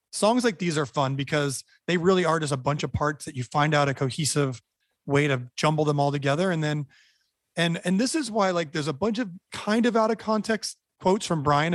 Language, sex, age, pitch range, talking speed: English, male, 30-49, 145-185 Hz, 235 wpm